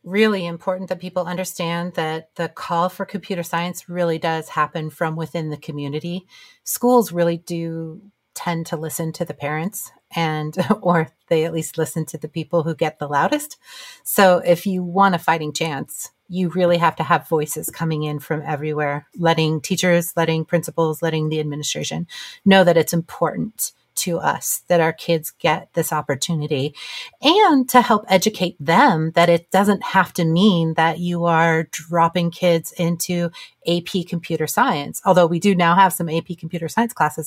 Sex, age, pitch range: female, 30-49, 165-190 Hz